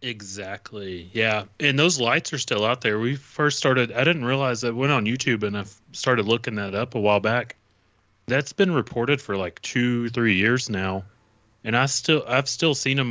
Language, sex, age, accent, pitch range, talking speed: English, male, 30-49, American, 105-120 Hz, 200 wpm